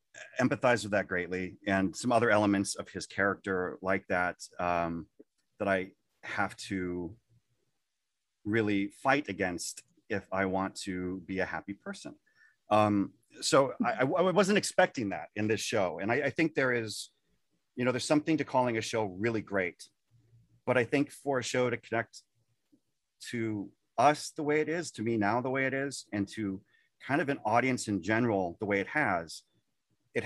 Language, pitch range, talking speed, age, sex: English, 95-125 Hz, 175 wpm, 30-49, male